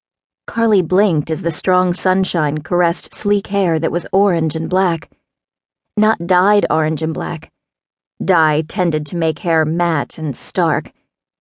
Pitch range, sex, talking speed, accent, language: 160-185 Hz, female, 140 wpm, American, English